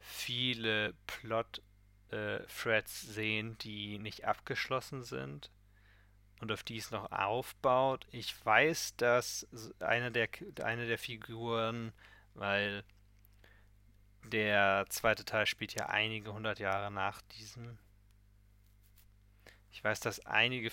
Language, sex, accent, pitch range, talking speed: German, male, German, 100-110 Hz, 105 wpm